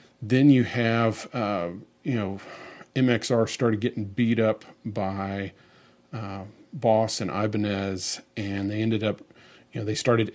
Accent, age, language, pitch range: American, 40-59, English, 105-125 Hz